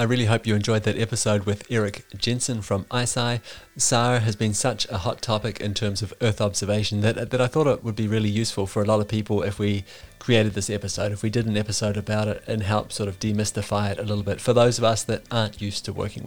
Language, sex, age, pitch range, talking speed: English, male, 30-49, 105-130 Hz, 250 wpm